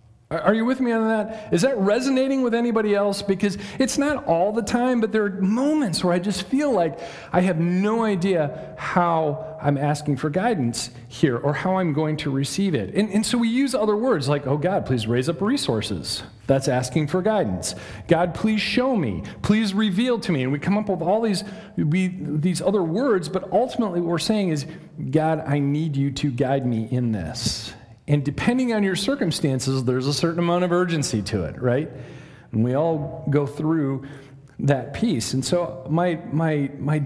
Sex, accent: male, American